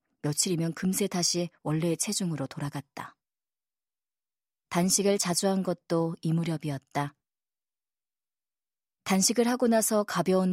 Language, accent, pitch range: Korean, native, 155-190 Hz